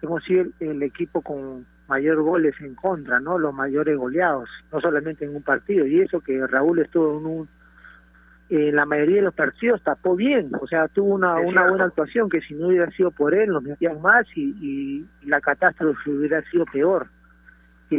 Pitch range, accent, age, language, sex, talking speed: 140-175 Hz, Argentinian, 40-59, Spanish, male, 195 wpm